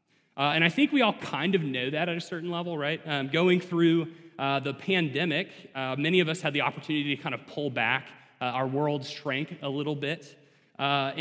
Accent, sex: American, male